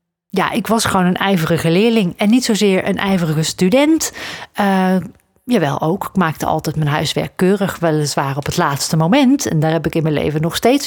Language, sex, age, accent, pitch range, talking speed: Dutch, female, 40-59, Dutch, 160-205 Hz, 200 wpm